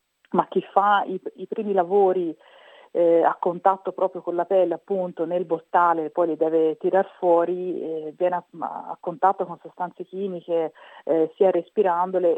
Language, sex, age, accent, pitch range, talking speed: Italian, female, 40-59, native, 165-200 Hz, 165 wpm